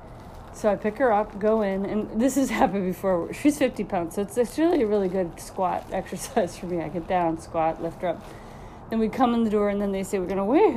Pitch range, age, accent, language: 170-230 Hz, 40-59, American, English